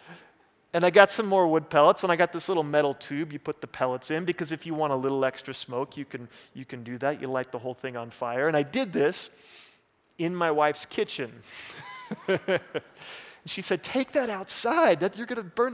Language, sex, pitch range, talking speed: English, male, 140-185 Hz, 210 wpm